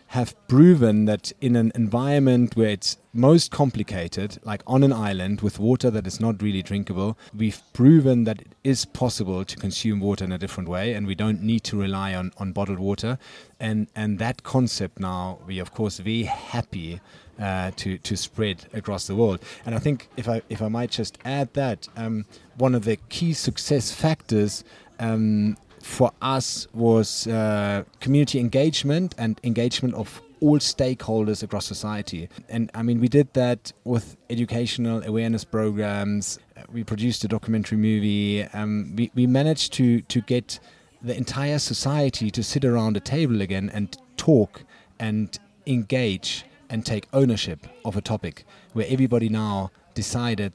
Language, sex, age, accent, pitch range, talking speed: English, male, 30-49, German, 100-125 Hz, 165 wpm